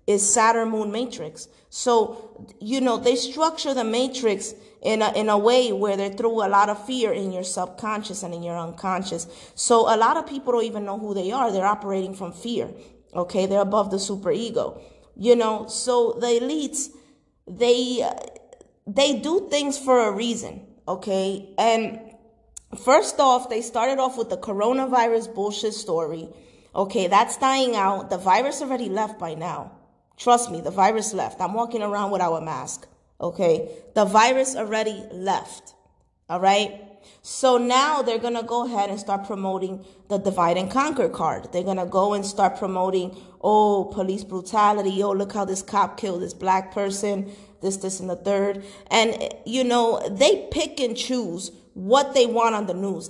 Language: English